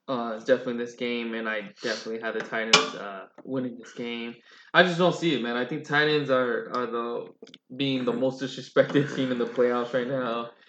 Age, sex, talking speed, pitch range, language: 20-39, male, 215 wpm, 120-130 Hz, English